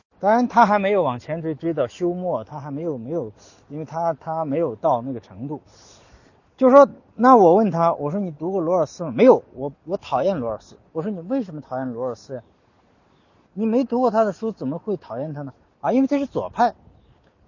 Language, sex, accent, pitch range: Chinese, male, native, 135-215 Hz